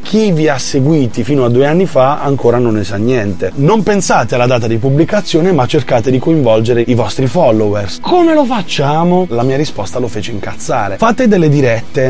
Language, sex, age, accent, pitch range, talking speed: Italian, male, 30-49, native, 110-155 Hz, 195 wpm